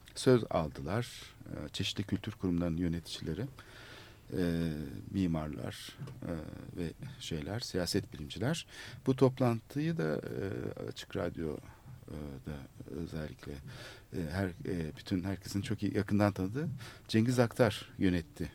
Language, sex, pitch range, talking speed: Turkish, male, 90-120 Hz, 85 wpm